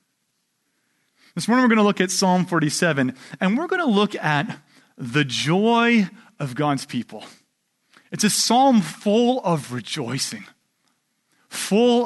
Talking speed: 135 wpm